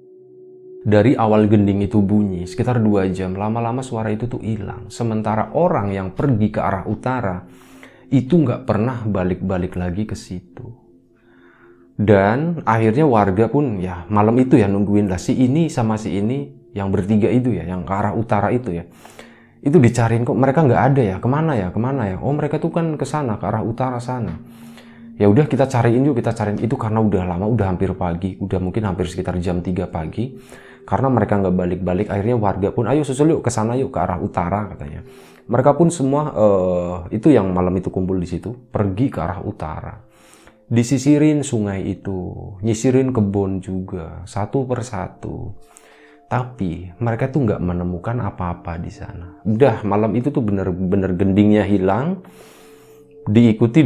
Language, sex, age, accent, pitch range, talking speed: Indonesian, male, 30-49, native, 95-125 Hz, 165 wpm